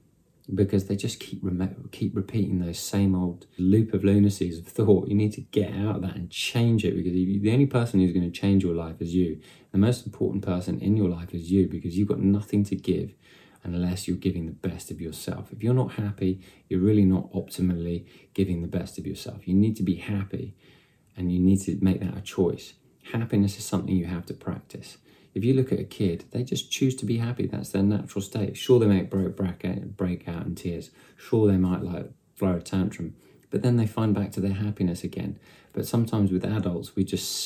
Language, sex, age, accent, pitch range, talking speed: English, male, 30-49, British, 90-100 Hz, 215 wpm